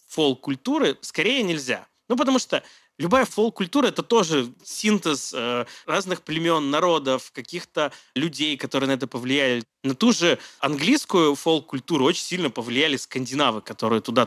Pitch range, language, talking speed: 130-170 Hz, Russian, 135 wpm